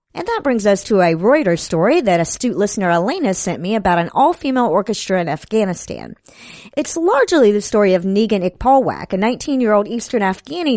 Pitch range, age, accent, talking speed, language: 175-255 Hz, 50-69, American, 175 wpm, English